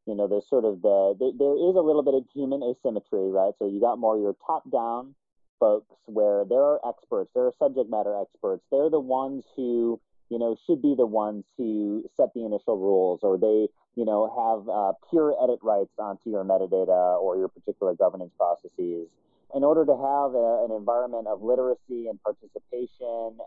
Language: English